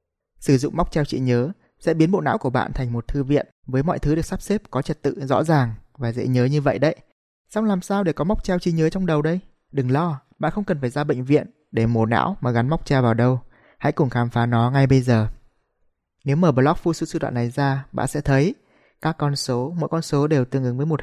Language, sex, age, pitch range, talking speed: Vietnamese, male, 20-39, 125-155 Hz, 270 wpm